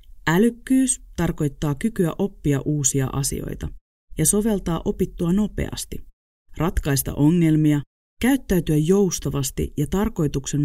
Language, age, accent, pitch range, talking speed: Finnish, 30-49, native, 140-185 Hz, 90 wpm